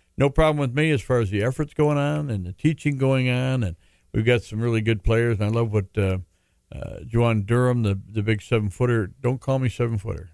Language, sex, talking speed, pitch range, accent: English, male, 240 wpm, 105-125 Hz, American